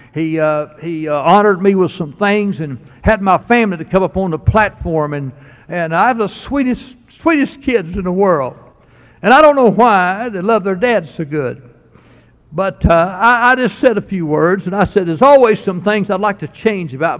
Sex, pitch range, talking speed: male, 160-215 Hz, 215 wpm